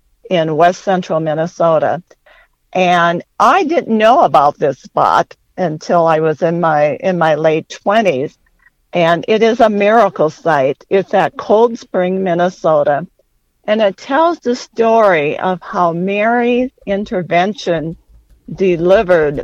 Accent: American